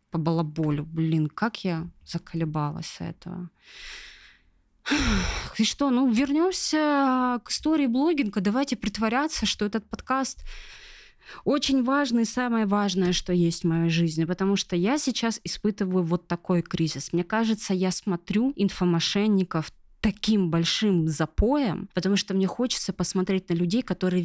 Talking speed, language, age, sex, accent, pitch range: 130 wpm, Russian, 20-39, female, native, 170-225 Hz